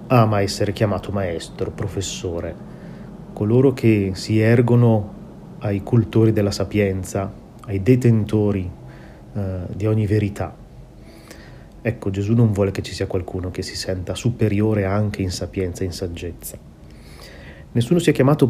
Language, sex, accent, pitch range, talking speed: Italian, male, native, 95-115 Hz, 135 wpm